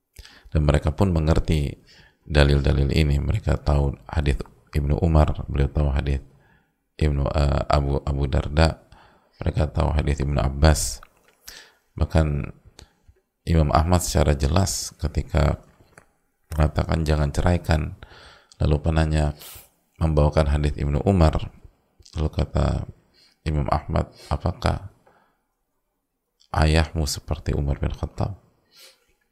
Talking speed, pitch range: 100 wpm, 75-90 Hz